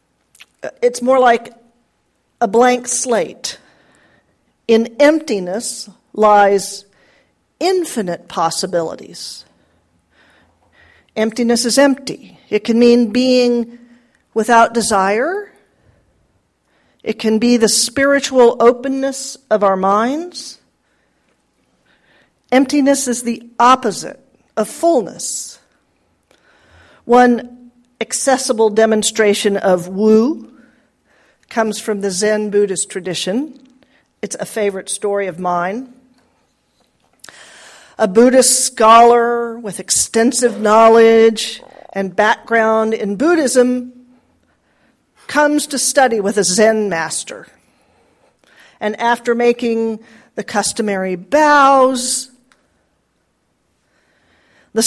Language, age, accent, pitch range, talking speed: English, 50-69, American, 205-250 Hz, 85 wpm